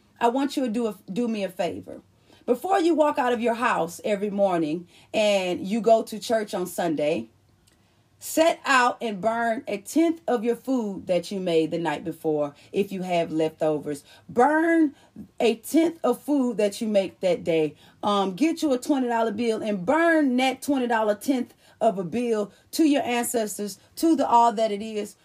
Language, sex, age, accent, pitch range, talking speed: English, female, 30-49, American, 210-275 Hz, 185 wpm